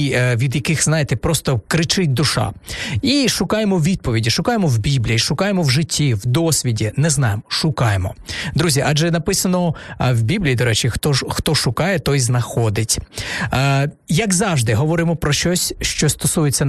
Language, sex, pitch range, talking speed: Ukrainian, male, 130-170 Hz, 140 wpm